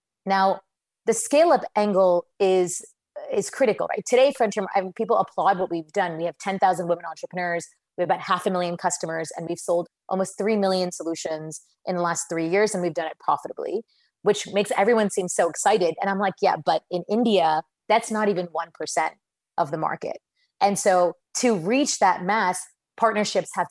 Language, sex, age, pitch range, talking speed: English, female, 30-49, 175-210 Hz, 180 wpm